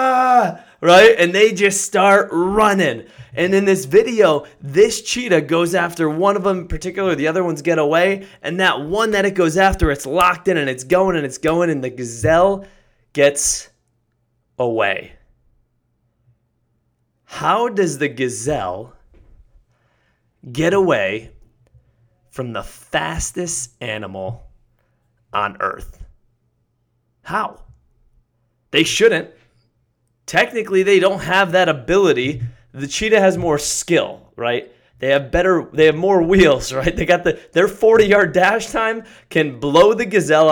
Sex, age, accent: male, 20-39, American